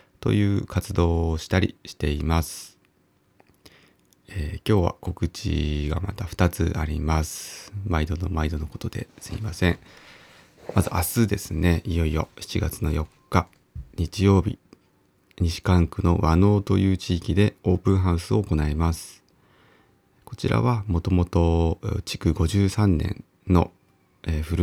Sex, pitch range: male, 80-100 Hz